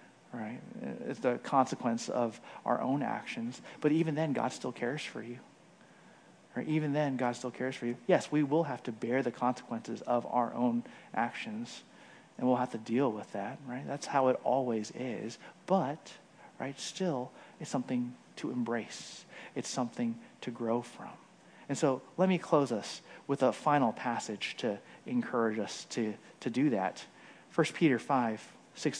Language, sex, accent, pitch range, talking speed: English, male, American, 130-175 Hz, 170 wpm